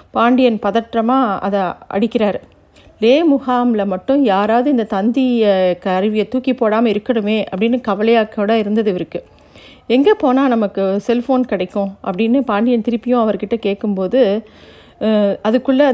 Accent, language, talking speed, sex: native, Tamil, 110 wpm, female